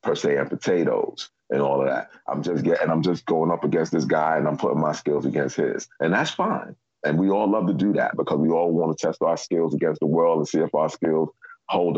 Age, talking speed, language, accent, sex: 30-49, 265 wpm, English, American, male